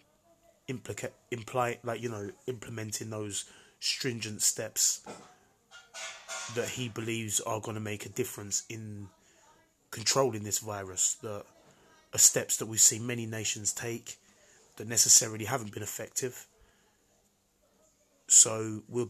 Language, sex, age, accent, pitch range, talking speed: English, male, 20-39, British, 105-120 Hz, 120 wpm